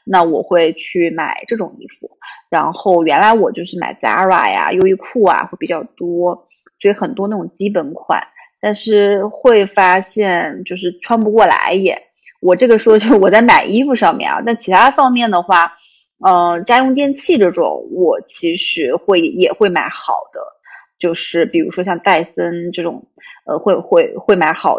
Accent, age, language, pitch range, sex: native, 30-49, Chinese, 175-245 Hz, female